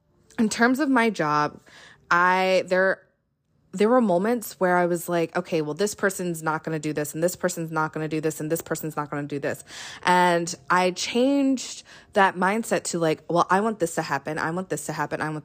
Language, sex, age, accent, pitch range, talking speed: English, female, 20-39, American, 165-220 Hz, 230 wpm